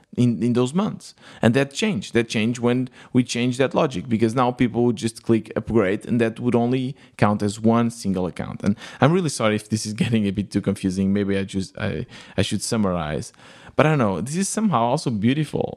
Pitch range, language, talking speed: 105-130 Hz, English, 220 wpm